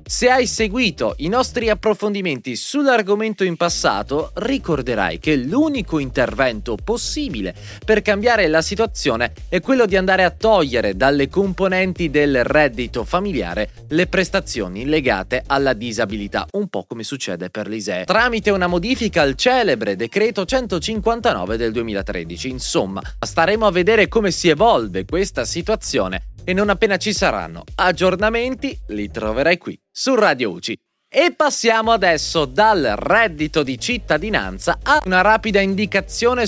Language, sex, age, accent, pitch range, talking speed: Italian, male, 20-39, native, 130-220 Hz, 135 wpm